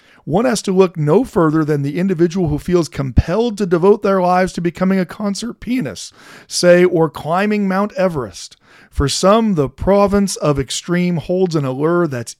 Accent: American